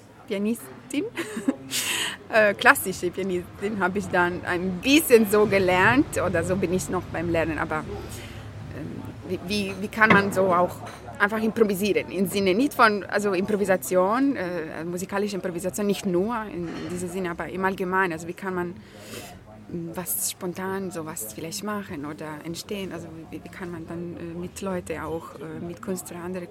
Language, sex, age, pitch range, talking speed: German, female, 20-39, 160-195 Hz, 155 wpm